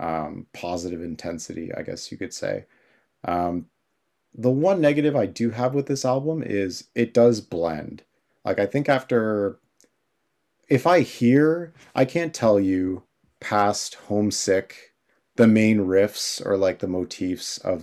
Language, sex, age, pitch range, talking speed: English, male, 30-49, 90-120 Hz, 145 wpm